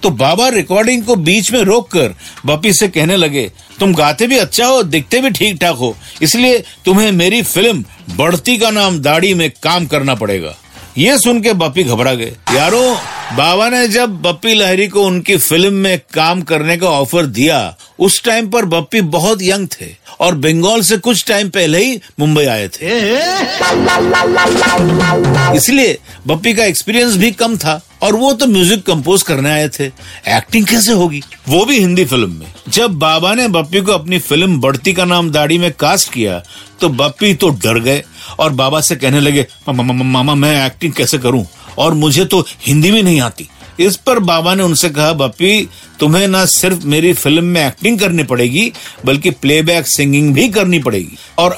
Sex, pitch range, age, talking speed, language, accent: male, 145-200 Hz, 50-69, 115 wpm, Hindi, native